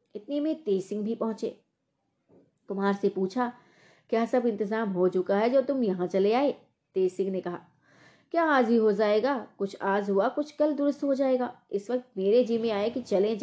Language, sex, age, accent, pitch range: Hindi, female, 20-39, native, 190-255 Hz